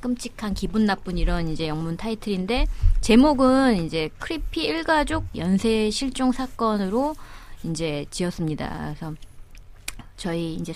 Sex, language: female, Korean